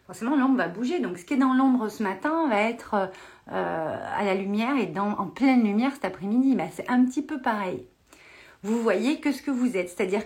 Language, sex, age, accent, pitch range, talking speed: French, female, 40-59, French, 195-270 Hz, 220 wpm